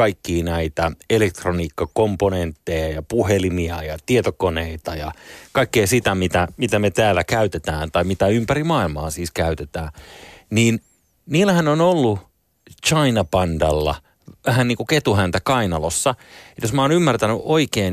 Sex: male